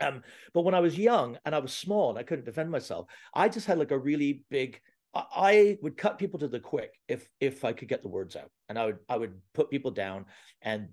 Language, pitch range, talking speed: English, 115-160 Hz, 260 wpm